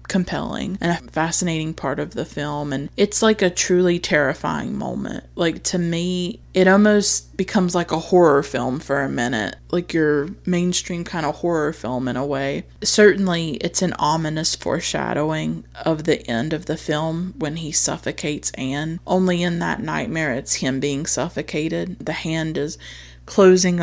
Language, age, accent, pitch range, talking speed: English, 30-49, American, 150-175 Hz, 165 wpm